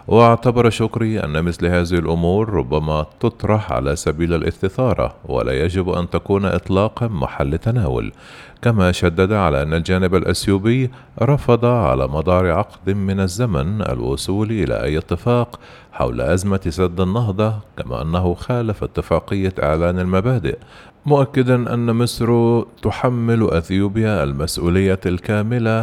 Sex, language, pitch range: male, Arabic, 85-115 Hz